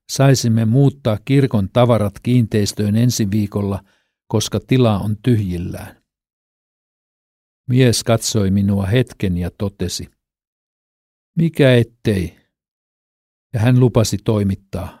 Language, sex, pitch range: Finnish, male, 100-125 Hz